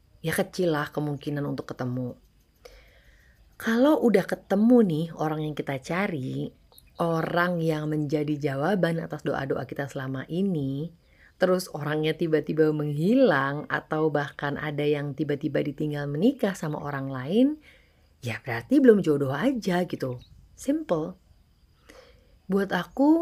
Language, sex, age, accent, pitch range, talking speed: Indonesian, female, 30-49, native, 150-195 Hz, 120 wpm